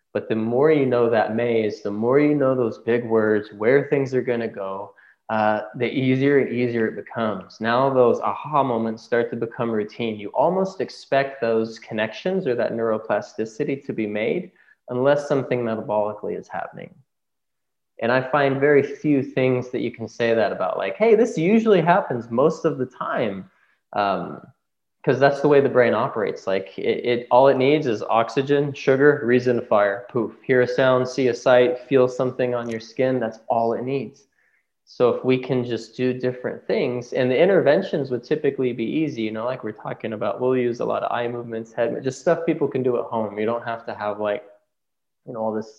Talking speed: 200 wpm